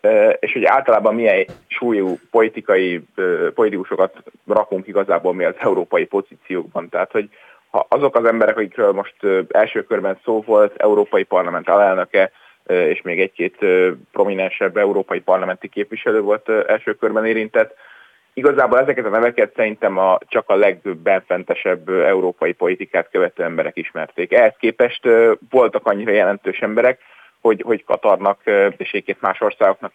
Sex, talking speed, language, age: male, 130 wpm, Hungarian, 30-49